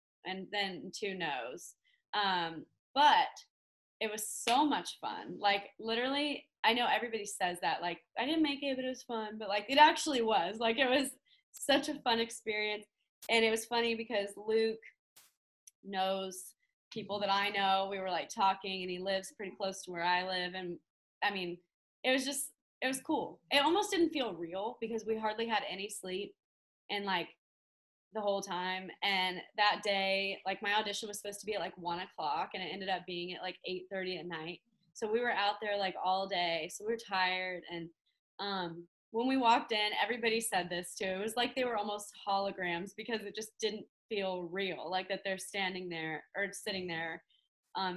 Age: 20-39